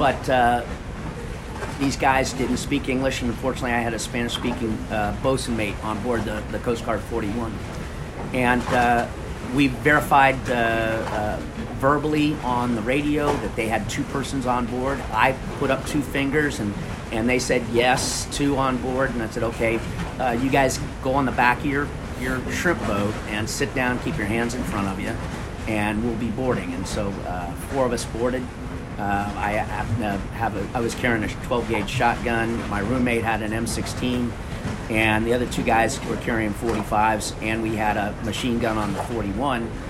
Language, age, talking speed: English, 40-59, 185 wpm